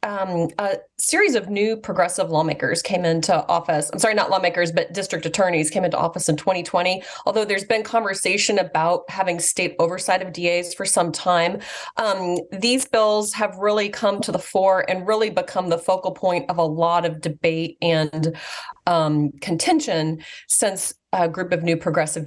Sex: female